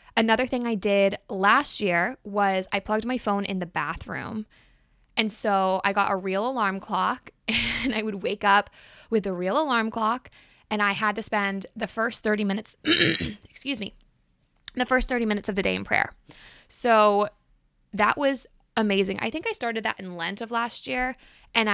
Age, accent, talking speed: 20-39, American, 185 wpm